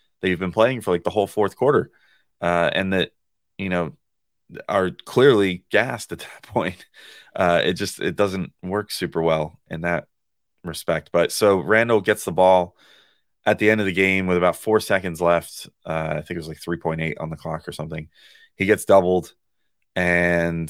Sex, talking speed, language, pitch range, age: male, 190 wpm, English, 85-105 Hz, 30-49